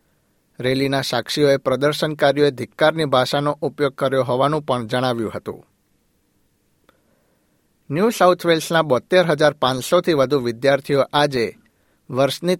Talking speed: 95 wpm